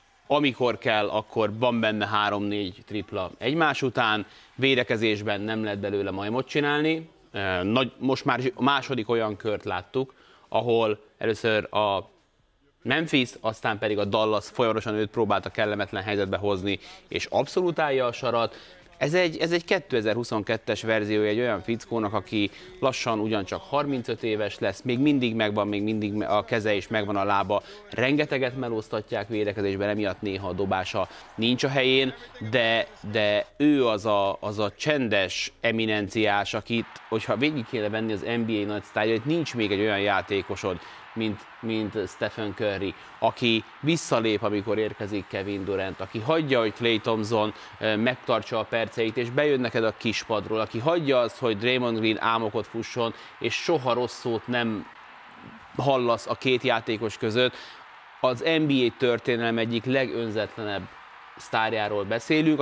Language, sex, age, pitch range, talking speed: Hungarian, male, 30-49, 105-125 Hz, 140 wpm